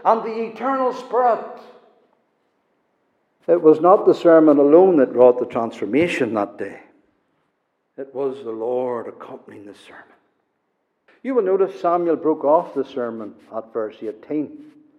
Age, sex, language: 60-79, male, English